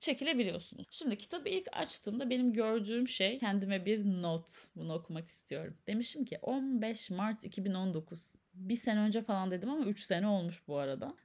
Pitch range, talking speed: 180-250 Hz, 160 wpm